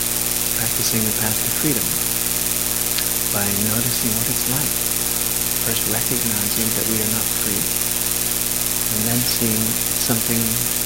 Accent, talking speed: American, 120 wpm